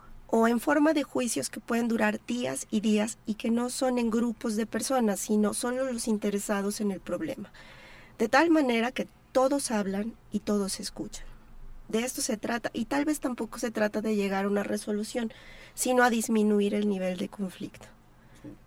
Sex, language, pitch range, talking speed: female, Spanish, 205-245 Hz, 185 wpm